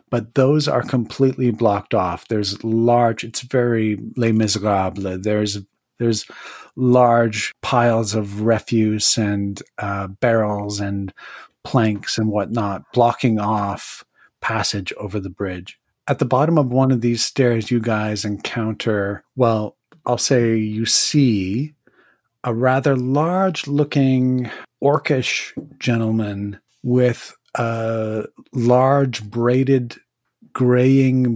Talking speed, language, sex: 110 wpm, English, male